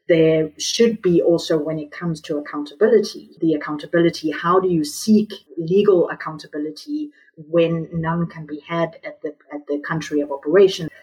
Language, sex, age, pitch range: English, female, 30-49, 155-180 Hz